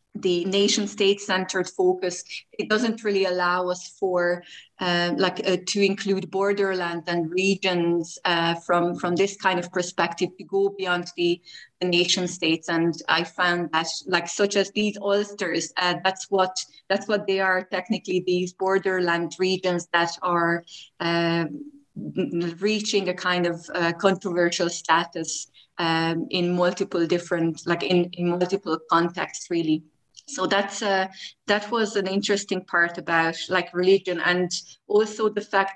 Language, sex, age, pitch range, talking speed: English, female, 30-49, 170-195 Hz, 150 wpm